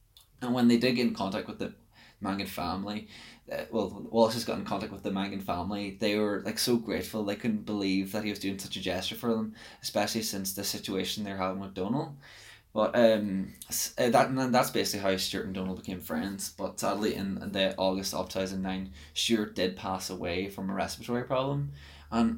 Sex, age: male, 10-29